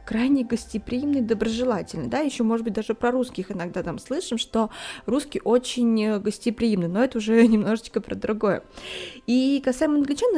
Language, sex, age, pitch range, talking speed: Russian, female, 20-39, 220-270 Hz, 150 wpm